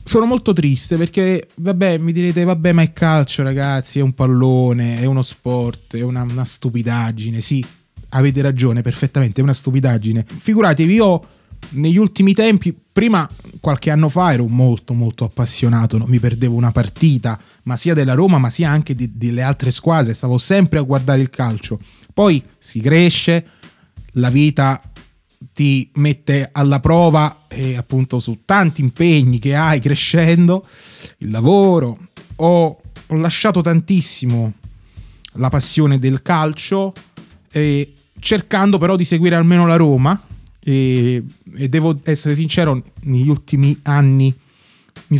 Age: 20-39